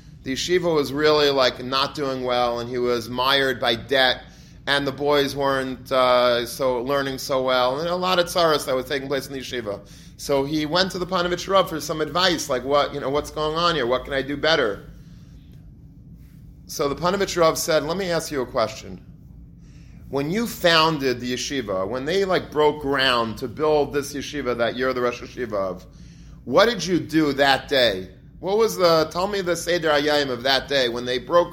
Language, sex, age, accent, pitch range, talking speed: English, male, 30-49, American, 125-160 Hz, 205 wpm